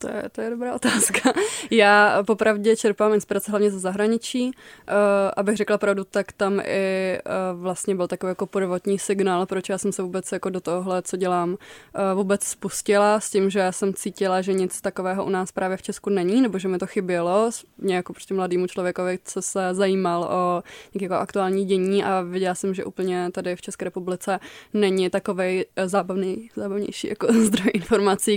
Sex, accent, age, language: female, native, 20-39, Czech